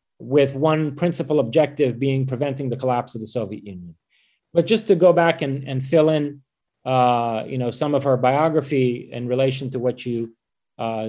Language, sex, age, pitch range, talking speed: English, male, 30-49, 130-155 Hz, 185 wpm